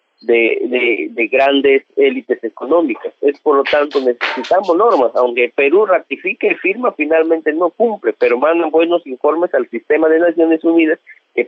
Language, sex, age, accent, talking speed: Spanish, male, 40-59, Mexican, 155 wpm